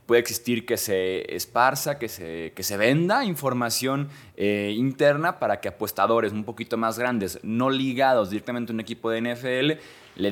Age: 20-39